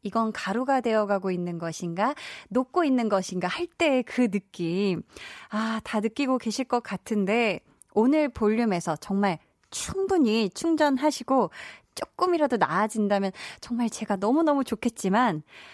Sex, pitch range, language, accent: female, 190-280 Hz, Korean, native